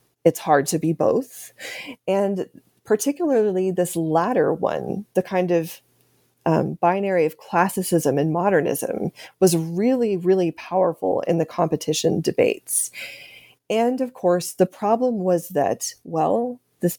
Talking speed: 125 wpm